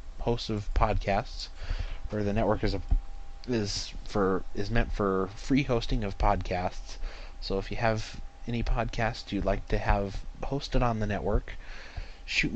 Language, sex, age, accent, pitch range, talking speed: English, male, 30-49, American, 95-110 Hz, 155 wpm